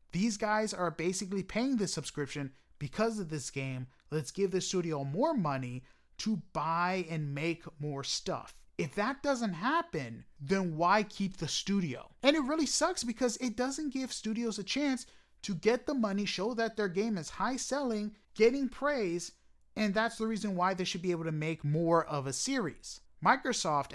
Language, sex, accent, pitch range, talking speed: English, male, American, 160-230 Hz, 180 wpm